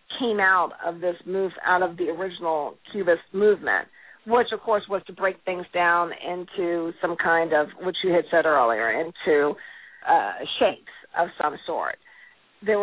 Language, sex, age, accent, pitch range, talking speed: English, female, 50-69, American, 175-205 Hz, 165 wpm